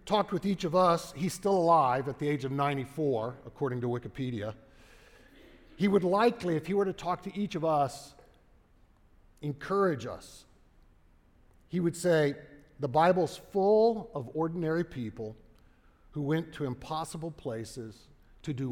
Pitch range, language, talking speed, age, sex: 115-160 Hz, English, 145 wpm, 50-69, male